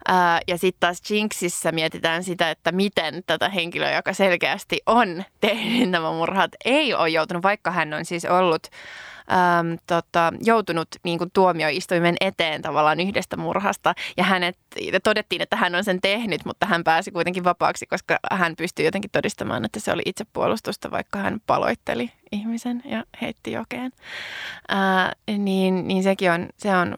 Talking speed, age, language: 140 wpm, 20-39, Finnish